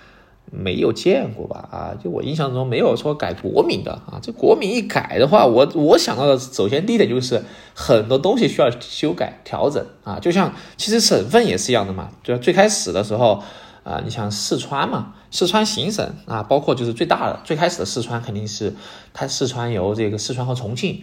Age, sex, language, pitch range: 20-39, male, Chinese, 115-170 Hz